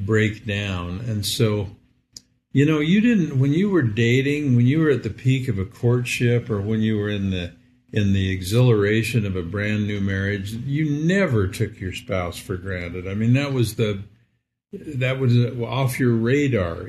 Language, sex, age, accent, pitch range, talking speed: English, male, 50-69, American, 105-130 Hz, 185 wpm